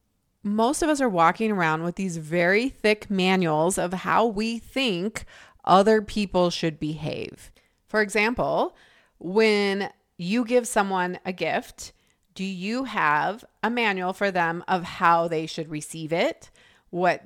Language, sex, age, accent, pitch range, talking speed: English, female, 30-49, American, 170-225 Hz, 145 wpm